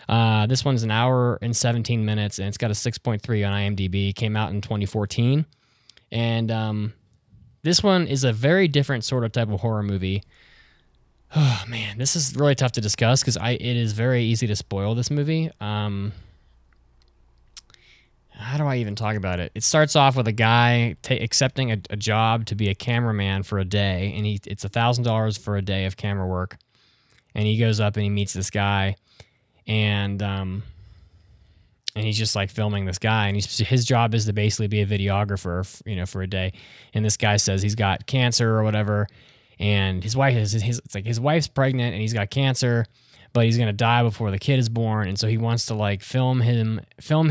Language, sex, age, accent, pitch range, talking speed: English, male, 20-39, American, 100-120 Hz, 205 wpm